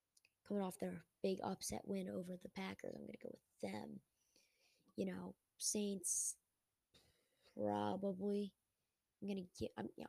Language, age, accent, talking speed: English, 20-39, American, 145 wpm